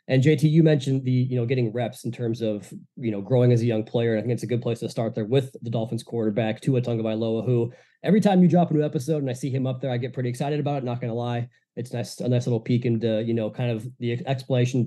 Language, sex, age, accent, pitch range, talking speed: English, male, 20-39, American, 120-145 Hz, 290 wpm